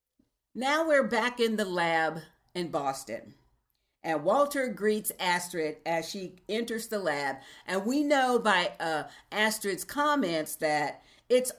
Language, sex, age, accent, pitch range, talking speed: English, female, 50-69, American, 160-220 Hz, 135 wpm